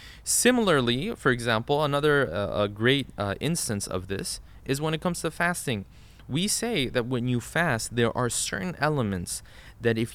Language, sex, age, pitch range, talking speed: English, male, 20-39, 110-145 Hz, 170 wpm